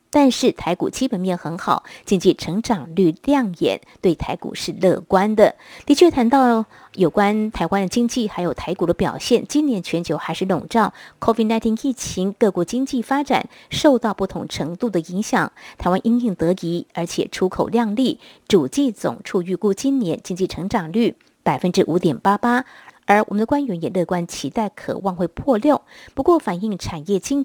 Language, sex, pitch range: Chinese, female, 180-255 Hz